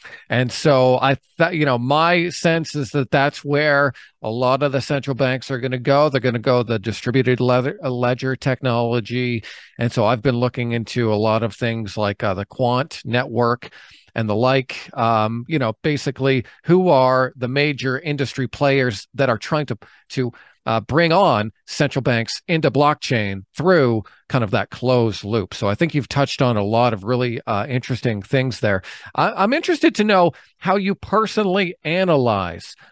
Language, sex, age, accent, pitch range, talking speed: English, male, 40-59, American, 115-145 Hz, 180 wpm